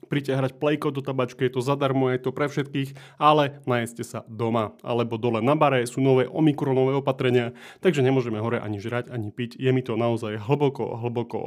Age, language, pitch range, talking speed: 30-49, Slovak, 120-145 Hz, 190 wpm